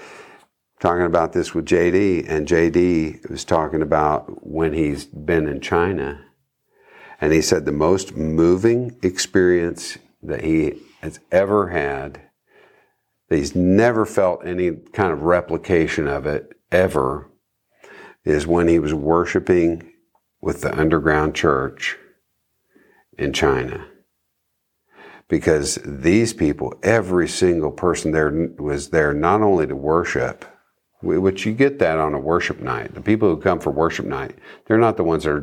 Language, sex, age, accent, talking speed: English, male, 50-69, American, 140 wpm